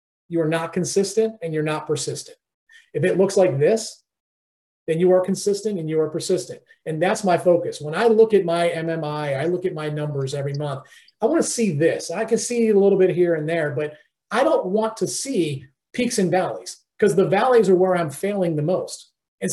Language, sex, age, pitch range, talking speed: English, male, 40-59, 170-225 Hz, 220 wpm